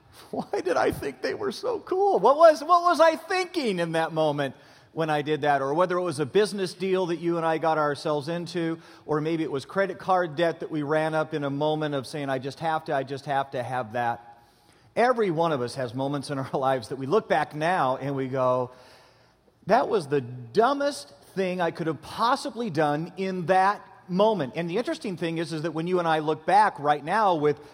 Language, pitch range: English, 145-195 Hz